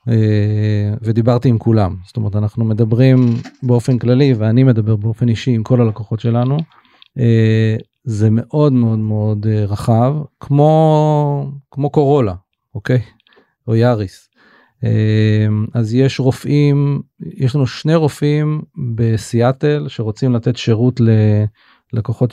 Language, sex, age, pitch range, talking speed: Hebrew, male, 40-59, 110-125 Hz, 115 wpm